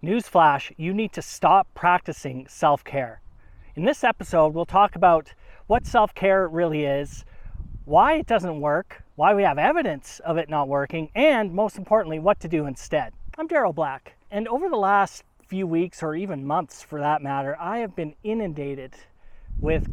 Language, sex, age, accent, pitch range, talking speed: English, male, 40-59, American, 140-175 Hz, 170 wpm